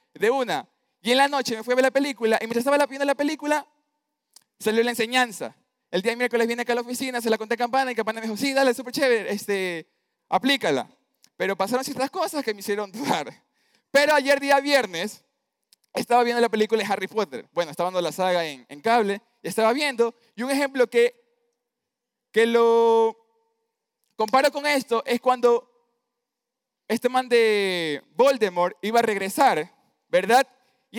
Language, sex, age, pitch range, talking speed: Spanish, male, 20-39, 210-255 Hz, 185 wpm